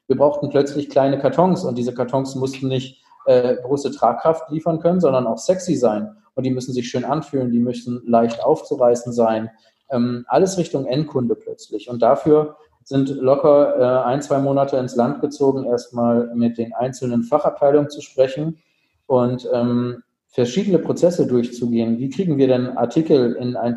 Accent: German